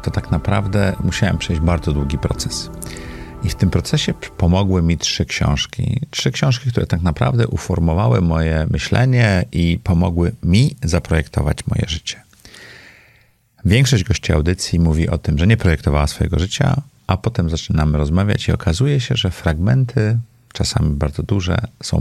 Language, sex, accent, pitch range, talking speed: Polish, male, native, 80-115 Hz, 145 wpm